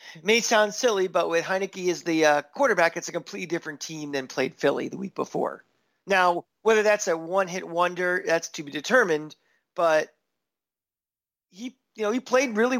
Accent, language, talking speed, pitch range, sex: American, English, 180 wpm, 165-215 Hz, male